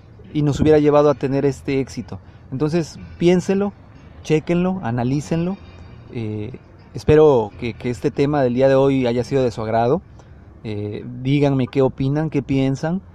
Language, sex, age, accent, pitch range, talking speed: Spanish, male, 30-49, Mexican, 115-150 Hz, 150 wpm